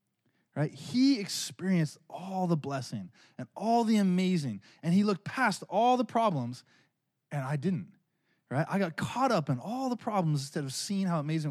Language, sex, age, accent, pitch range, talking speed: English, male, 20-39, American, 145-205 Hz, 175 wpm